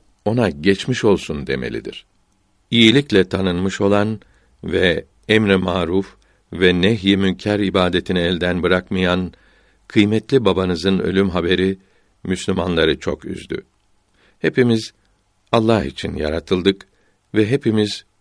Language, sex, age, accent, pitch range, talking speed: Turkish, male, 60-79, native, 90-105 Hz, 95 wpm